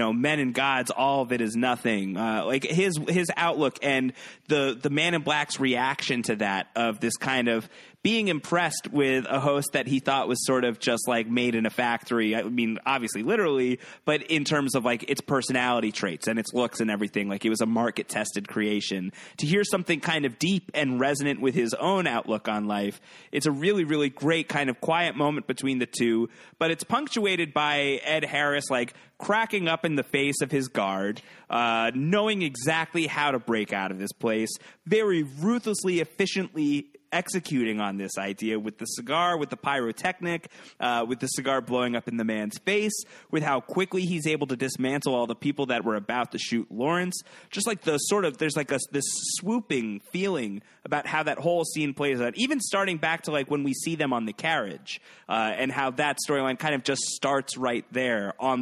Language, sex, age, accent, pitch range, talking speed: English, male, 30-49, American, 120-165 Hz, 205 wpm